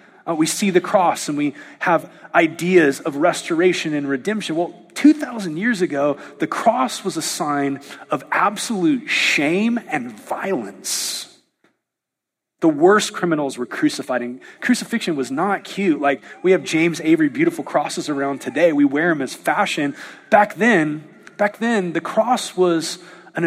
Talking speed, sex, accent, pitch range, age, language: 155 wpm, male, American, 170-250 Hz, 30-49, English